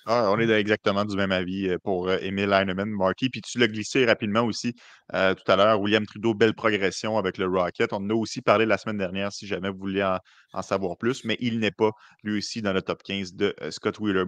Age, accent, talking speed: 30-49, Canadian, 250 wpm